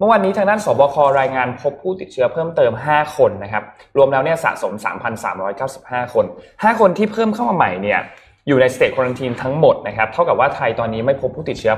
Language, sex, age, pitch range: Thai, male, 20-39, 110-150 Hz